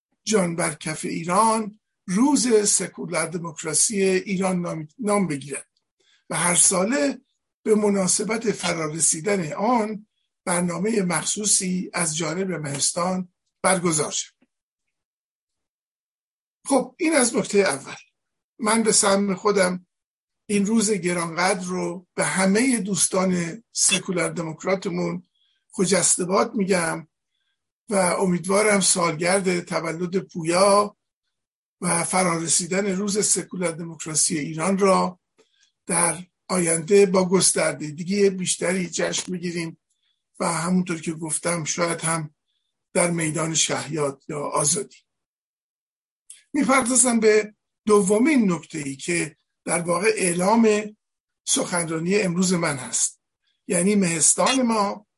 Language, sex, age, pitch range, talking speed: Persian, male, 50-69, 170-210 Hz, 100 wpm